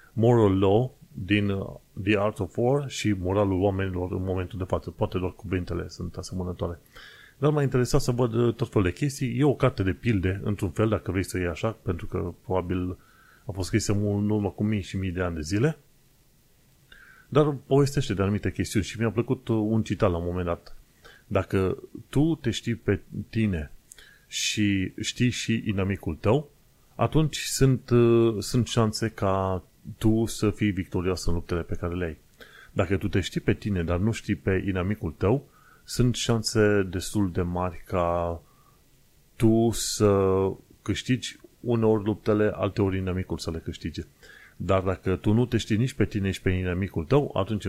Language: Romanian